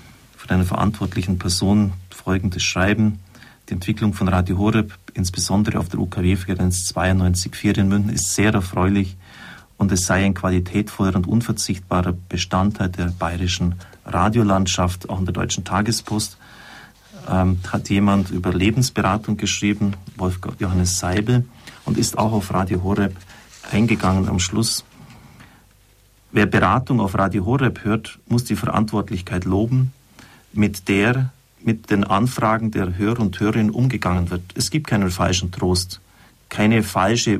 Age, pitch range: 40-59, 90-110 Hz